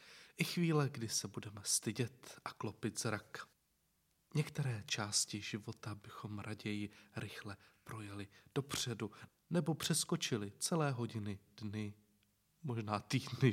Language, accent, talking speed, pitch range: Czech, native, 105 wpm, 105-135 Hz